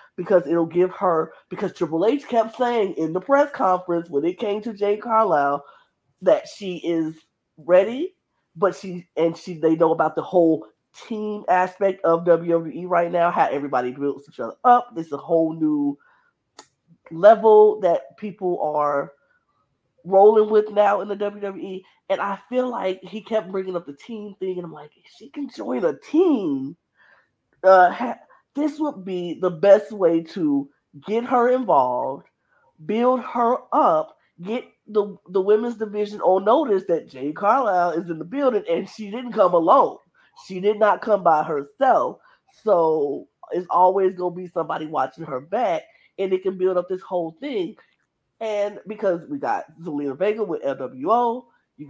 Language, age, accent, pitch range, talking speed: English, 20-39, American, 165-225 Hz, 165 wpm